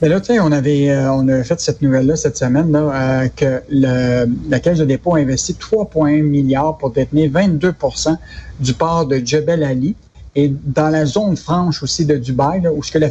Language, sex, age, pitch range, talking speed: French, male, 60-79, 140-170 Hz, 190 wpm